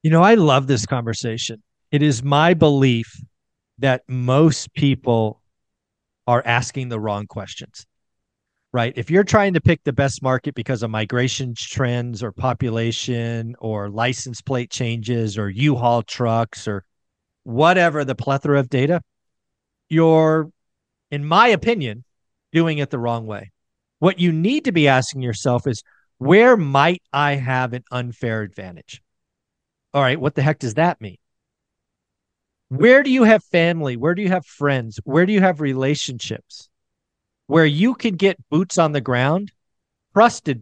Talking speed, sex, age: 150 wpm, male, 40-59